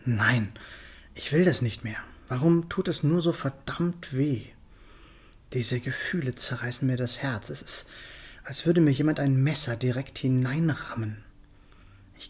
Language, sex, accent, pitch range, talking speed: German, male, German, 110-140 Hz, 145 wpm